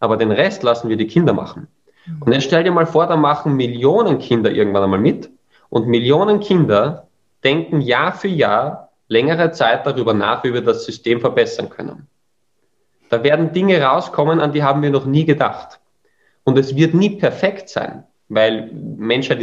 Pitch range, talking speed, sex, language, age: 115-150 Hz, 175 wpm, male, German, 20-39